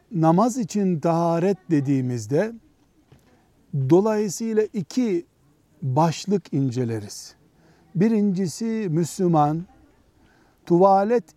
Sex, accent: male, native